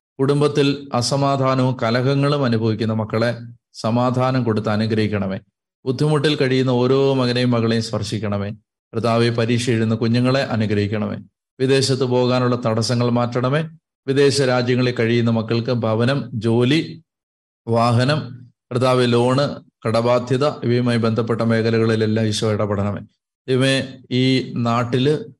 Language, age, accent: Malayalam, 30-49, native